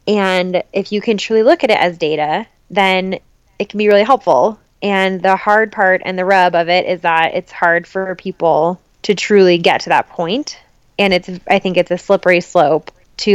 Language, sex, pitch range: English, female, 170-200 Hz